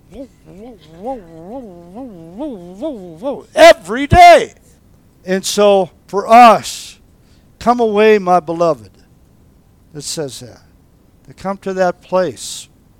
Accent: American